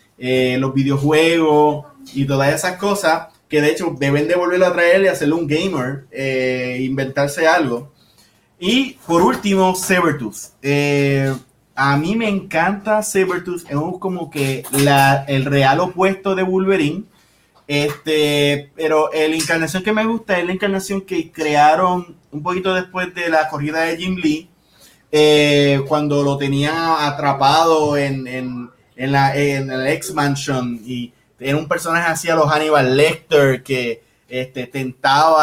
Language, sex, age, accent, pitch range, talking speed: Spanish, male, 30-49, Venezuelan, 130-165 Hz, 145 wpm